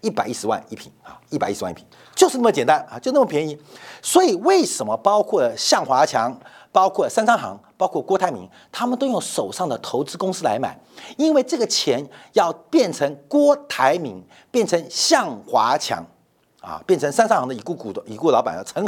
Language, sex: Chinese, male